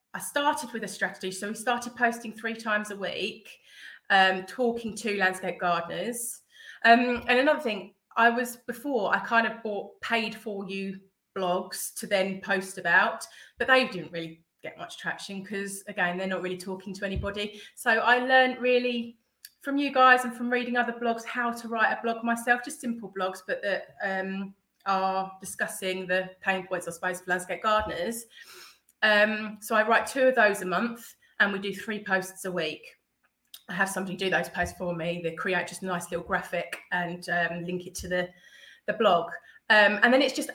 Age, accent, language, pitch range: 30-49, British, English, 185-230 Hz